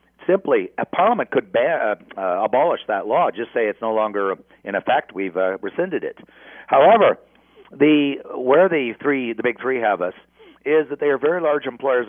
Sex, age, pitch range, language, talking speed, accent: male, 50-69, 120-155 Hz, English, 190 wpm, American